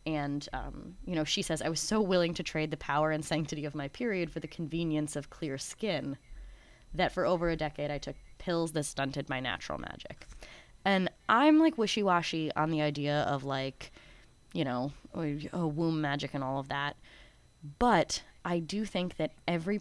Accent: American